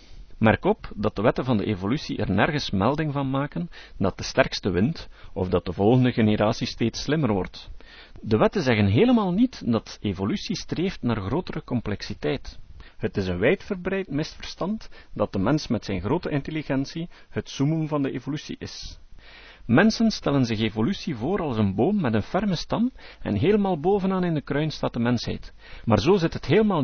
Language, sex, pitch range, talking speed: Dutch, male, 105-165 Hz, 180 wpm